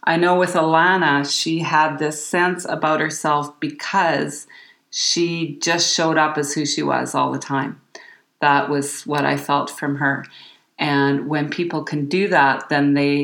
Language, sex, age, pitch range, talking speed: English, female, 40-59, 150-180 Hz, 170 wpm